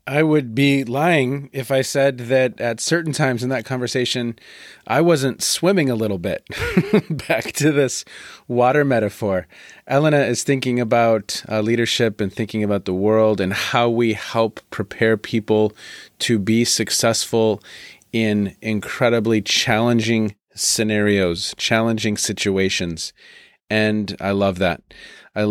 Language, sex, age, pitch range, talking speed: English, male, 30-49, 100-120 Hz, 130 wpm